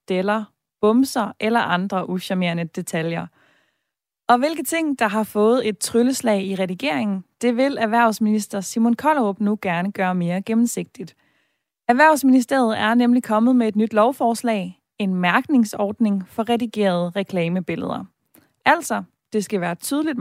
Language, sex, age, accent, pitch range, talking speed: Danish, female, 20-39, native, 190-240 Hz, 130 wpm